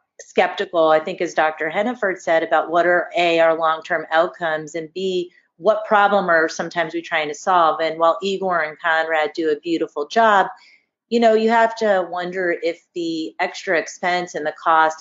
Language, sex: English, female